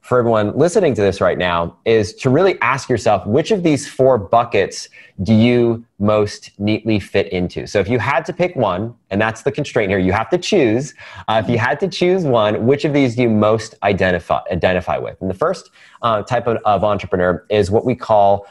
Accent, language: American, English